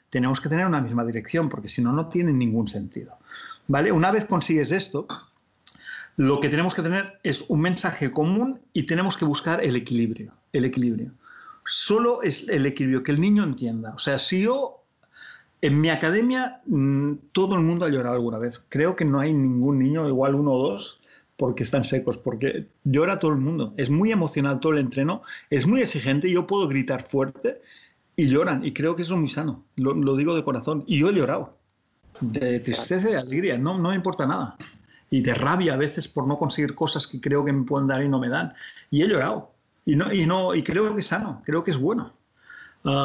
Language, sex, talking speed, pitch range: Spanish, male, 210 wpm, 135-175 Hz